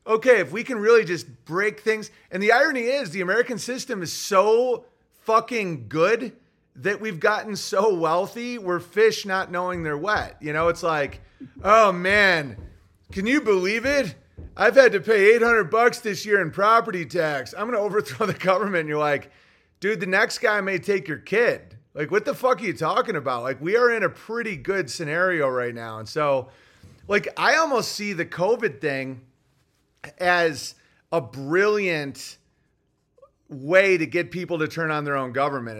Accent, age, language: American, 30-49, English